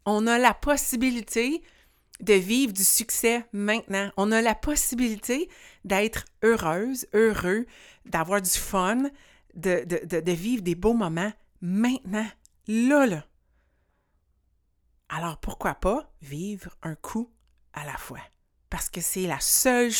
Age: 60-79